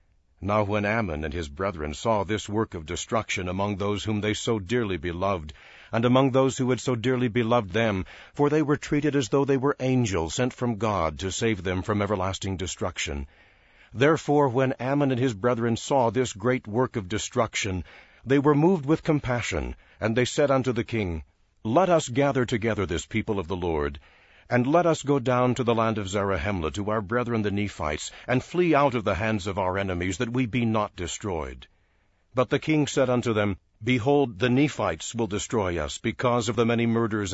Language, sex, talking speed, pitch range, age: English, male, 200 wpm, 95-130 Hz, 60-79